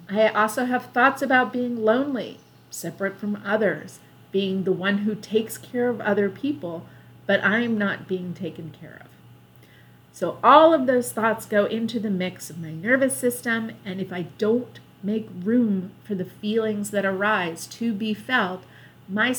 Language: English